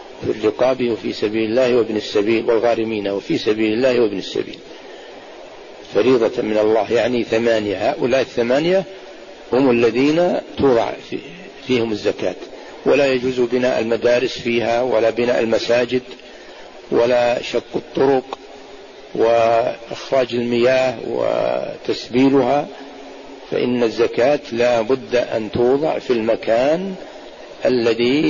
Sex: male